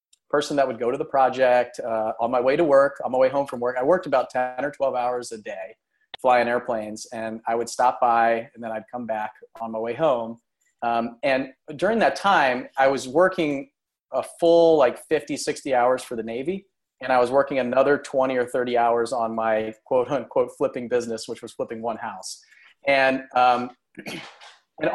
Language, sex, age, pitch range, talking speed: English, male, 30-49, 115-145 Hz, 200 wpm